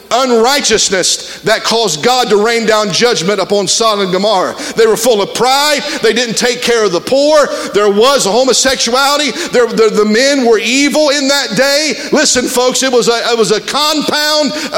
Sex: male